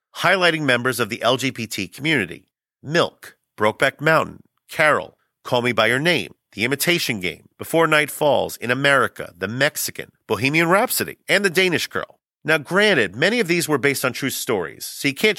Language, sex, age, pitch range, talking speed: English, male, 40-59, 120-165 Hz, 170 wpm